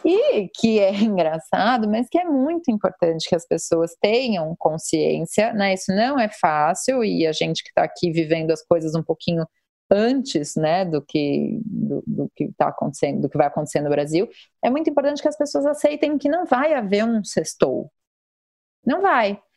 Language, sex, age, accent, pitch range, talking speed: Portuguese, female, 30-49, Brazilian, 210-300 Hz, 185 wpm